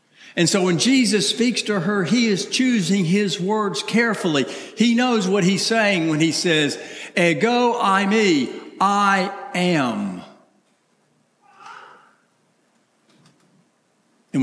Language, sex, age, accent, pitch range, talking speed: English, male, 60-79, American, 170-240 Hz, 110 wpm